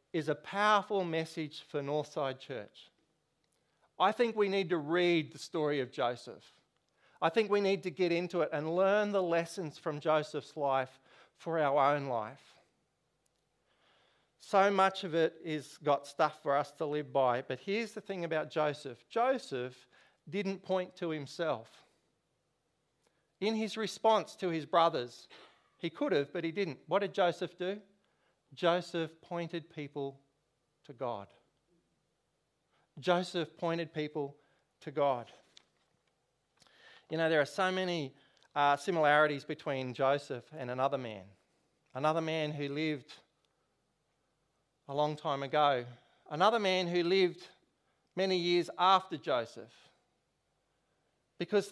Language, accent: English, Australian